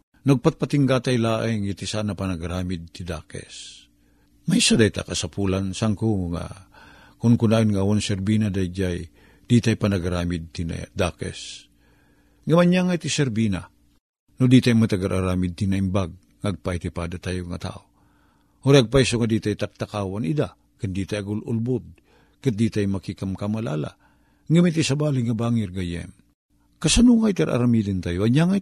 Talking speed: 125 wpm